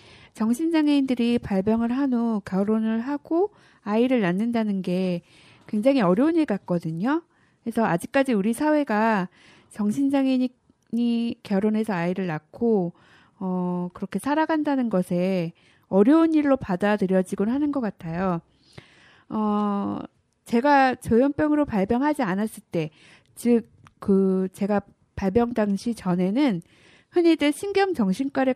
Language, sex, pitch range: Korean, female, 190-275 Hz